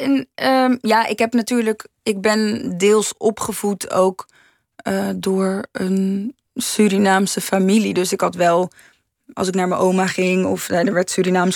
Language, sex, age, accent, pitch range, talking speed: Dutch, female, 20-39, Dutch, 190-220 Hz, 155 wpm